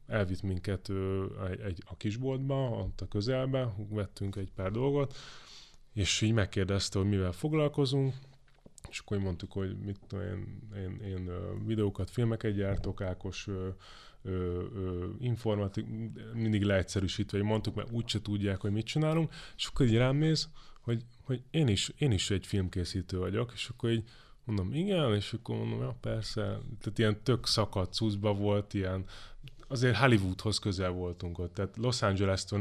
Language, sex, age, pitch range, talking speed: Hungarian, male, 20-39, 100-120 Hz, 155 wpm